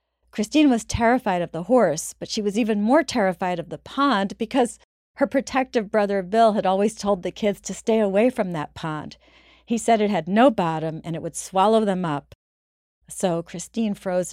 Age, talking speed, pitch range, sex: 40-59, 195 wpm, 160-210 Hz, female